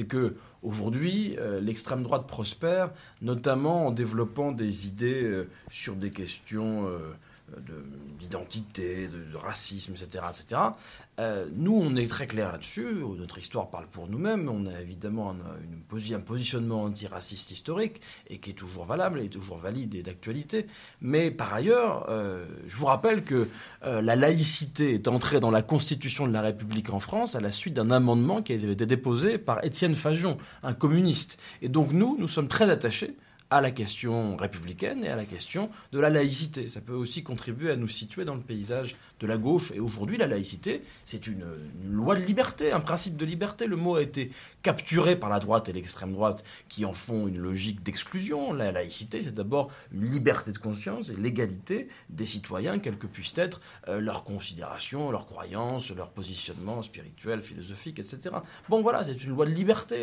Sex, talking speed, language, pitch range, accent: male, 180 wpm, French, 100-145 Hz, French